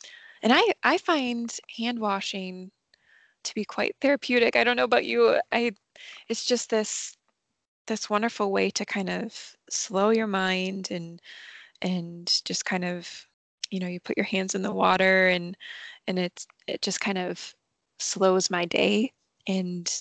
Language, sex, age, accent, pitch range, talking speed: English, female, 20-39, American, 190-235 Hz, 160 wpm